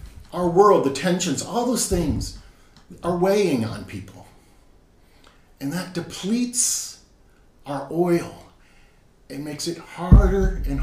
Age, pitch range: 50-69, 100-165 Hz